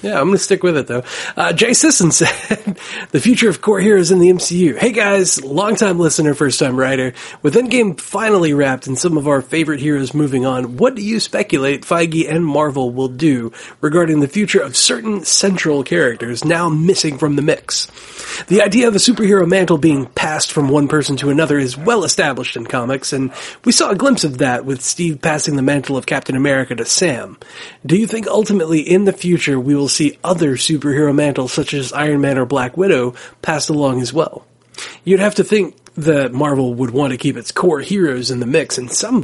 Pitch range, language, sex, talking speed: 135-185 Hz, English, male, 210 wpm